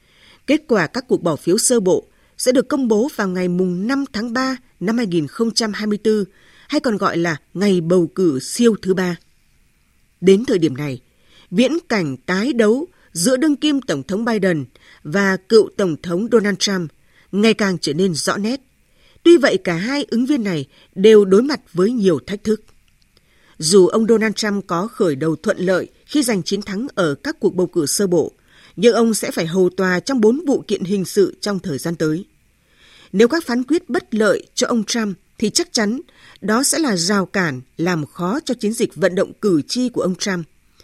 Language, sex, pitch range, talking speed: Vietnamese, female, 180-240 Hz, 200 wpm